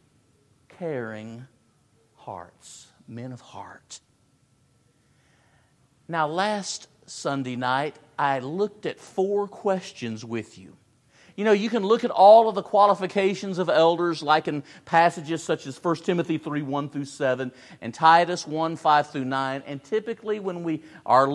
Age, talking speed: 50-69, 130 wpm